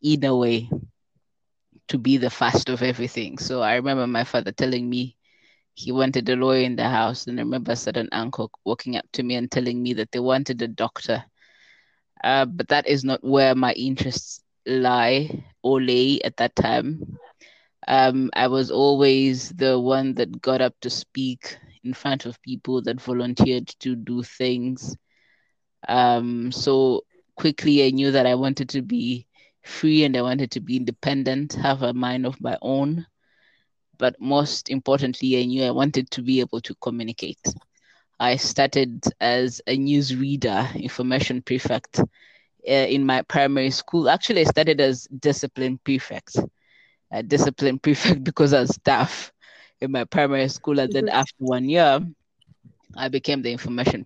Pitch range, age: 125-135 Hz, 20-39